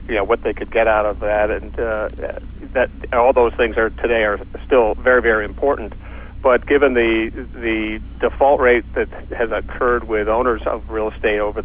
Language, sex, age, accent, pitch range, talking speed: English, male, 50-69, American, 105-115 Hz, 190 wpm